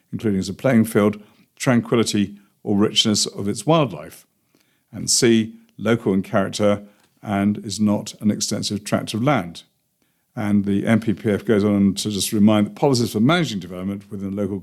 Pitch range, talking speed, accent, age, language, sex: 105-130 Hz, 160 wpm, British, 50-69, English, male